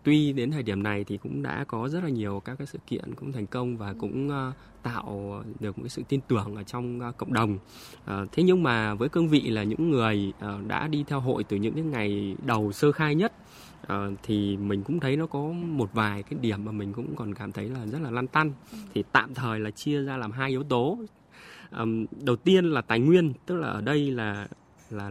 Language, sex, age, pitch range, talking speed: Vietnamese, male, 20-39, 105-145 Hz, 240 wpm